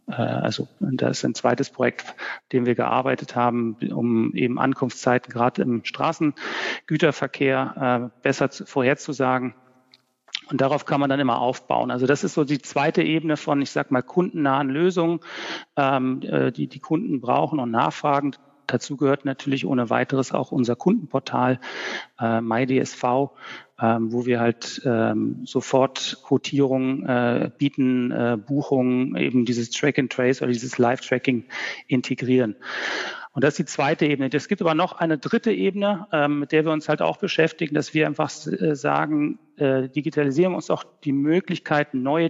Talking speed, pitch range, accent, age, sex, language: 150 wpm, 130-160 Hz, German, 40-59, male, German